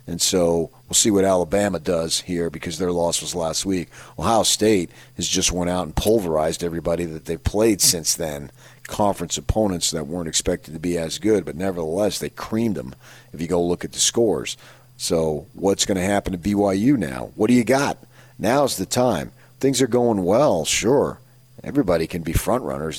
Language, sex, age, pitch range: English, male, 40-59, 85-110 Hz